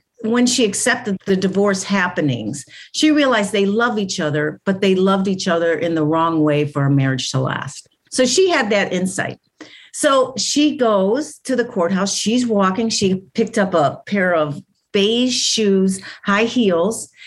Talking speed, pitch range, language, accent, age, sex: 170 wpm, 175-235 Hz, English, American, 50-69, female